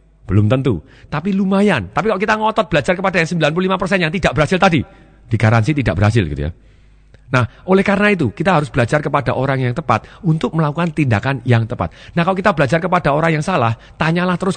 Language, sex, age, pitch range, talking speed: Indonesian, male, 40-59, 120-170 Hz, 200 wpm